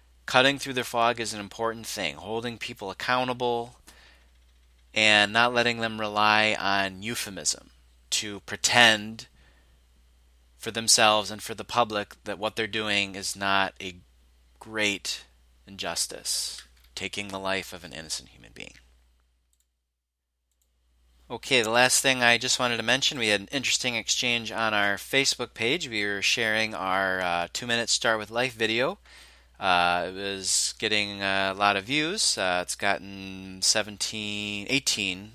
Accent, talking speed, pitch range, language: American, 145 wpm, 90-115 Hz, English